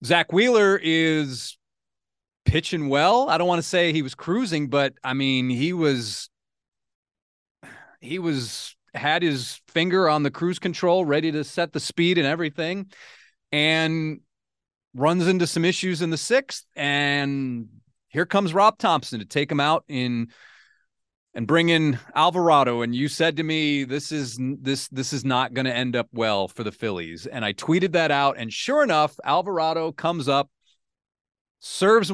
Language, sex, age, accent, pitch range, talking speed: English, male, 30-49, American, 130-170 Hz, 160 wpm